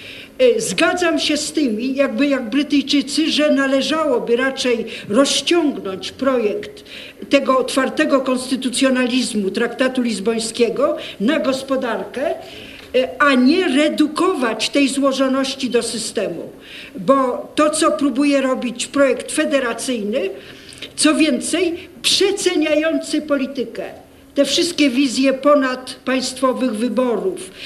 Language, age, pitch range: Polish, 50-69, 255-305 Hz